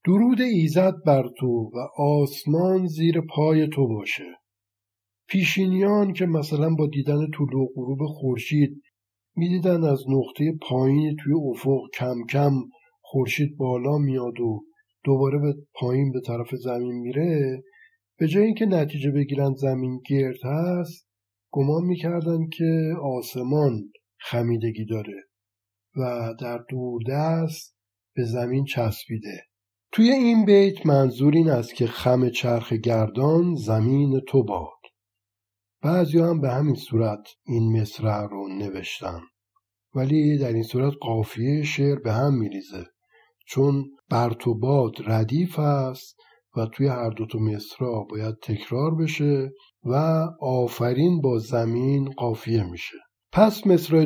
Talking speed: 125 wpm